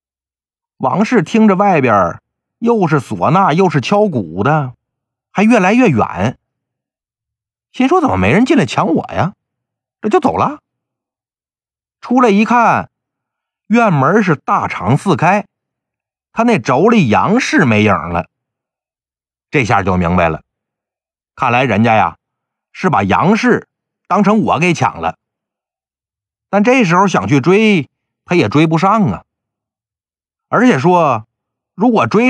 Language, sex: Chinese, male